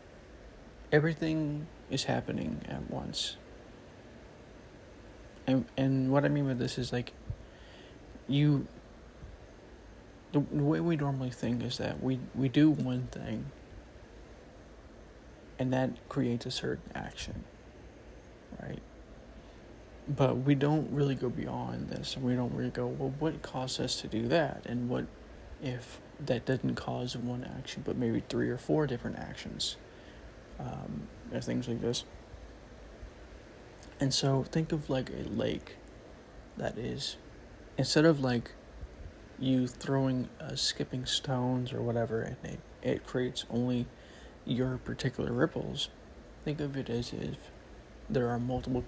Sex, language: male, English